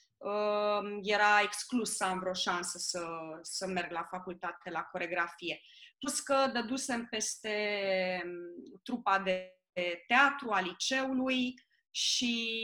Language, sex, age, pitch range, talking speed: Romanian, female, 20-39, 195-265 Hz, 110 wpm